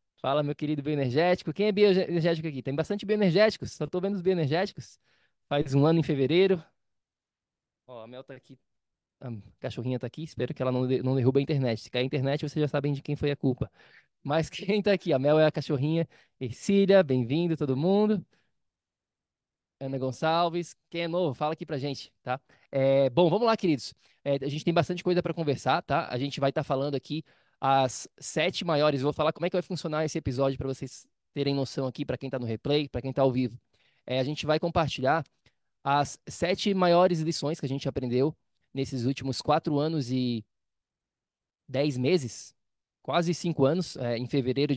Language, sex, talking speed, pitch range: Portuguese, male, 195 wpm, 135-165 Hz